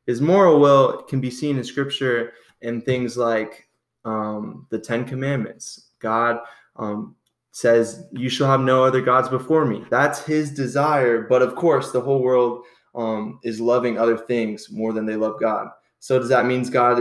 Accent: American